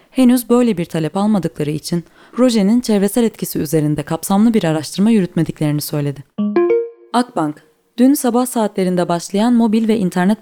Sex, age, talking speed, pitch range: female, 20-39, 130 wpm, 155-220 Hz